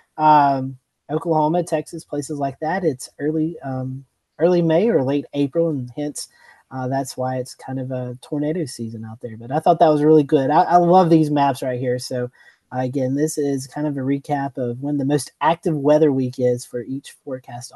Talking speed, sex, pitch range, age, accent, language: 205 wpm, male, 140-185 Hz, 30-49, American, English